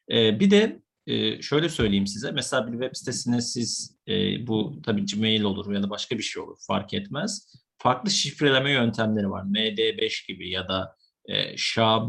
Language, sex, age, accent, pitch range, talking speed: Turkish, male, 50-69, native, 110-155 Hz, 155 wpm